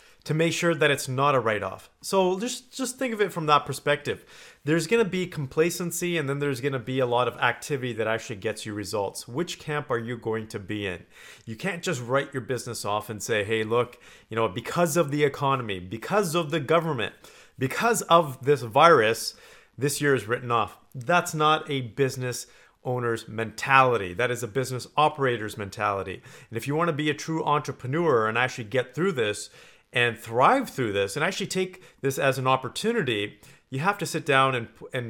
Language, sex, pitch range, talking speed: English, male, 120-150 Hz, 205 wpm